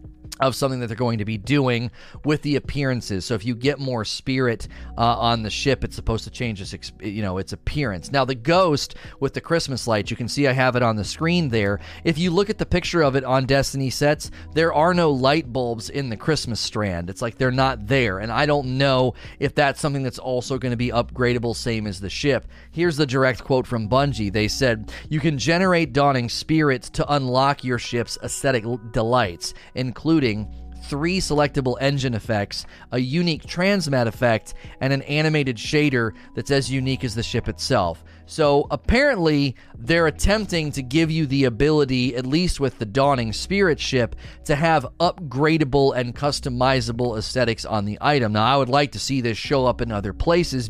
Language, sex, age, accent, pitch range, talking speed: English, male, 30-49, American, 115-145 Hz, 195 wpm